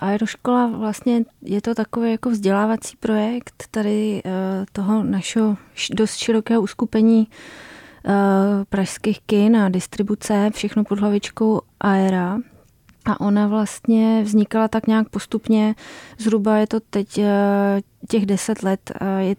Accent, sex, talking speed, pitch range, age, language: native, female, 115 wpm, 195-215 Hz, 20-39, Czech